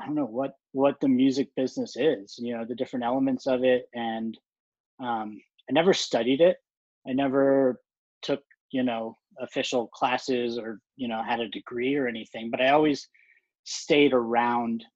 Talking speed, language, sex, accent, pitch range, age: 170 wpm, English, male, American, 120-140 Hz, 20-39